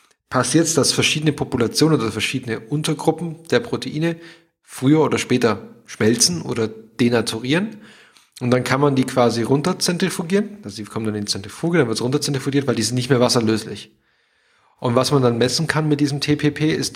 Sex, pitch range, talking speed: male, 110-145 Hz, 175 wpm